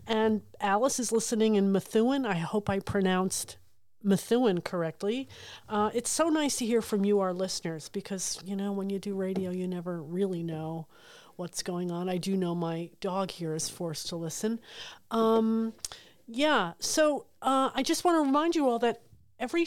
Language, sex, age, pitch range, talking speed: English, female, 40-59, 180-230 Hz, 180 wpm